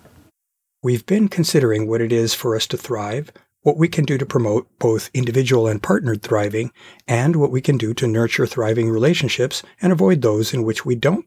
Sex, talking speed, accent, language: male, 195 wpm, American, English